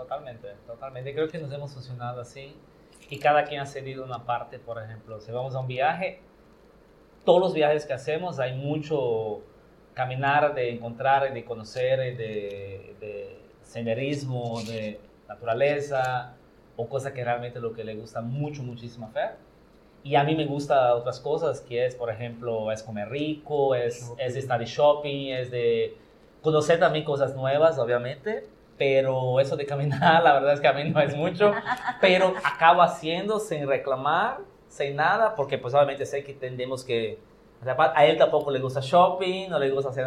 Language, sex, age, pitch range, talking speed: Spanish, male, 30-49, 125-155 Hz, 170 wpm